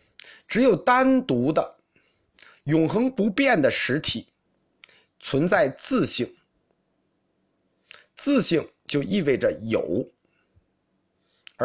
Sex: male